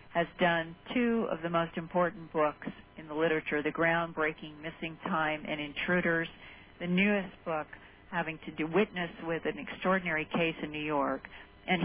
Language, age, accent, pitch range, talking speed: English, 50-69, American, 150-185 Hz, 160 wpm